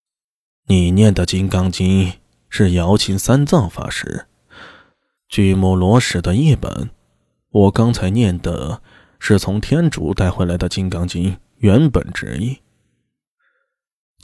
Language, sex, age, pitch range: Chinese, male, 20-39, 95-125 Hz